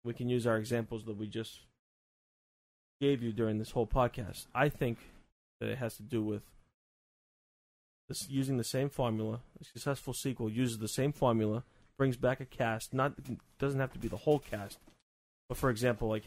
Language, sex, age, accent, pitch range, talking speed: English, male, 20-39, American, 110-135 Hz, 185 wpm